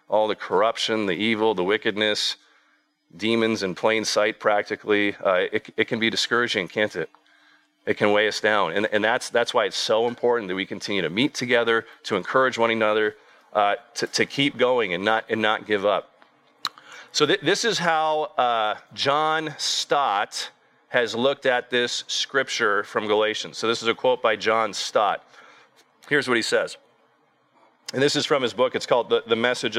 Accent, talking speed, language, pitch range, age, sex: American, 185 wpm, English, 115-185 Hz, 40-59, male